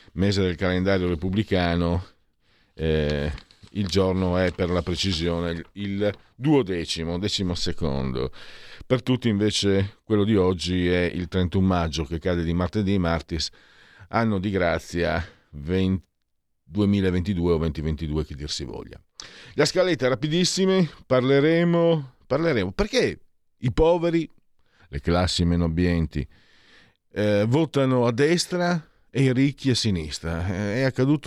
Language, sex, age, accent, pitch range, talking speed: Italian, male, 50-69, native, 90-130 Hz, 125 wpm